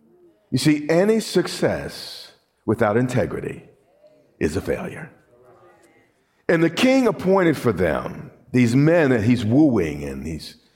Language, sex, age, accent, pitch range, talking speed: English, male, 50-69, American, 120-175 Hz, 125 wpm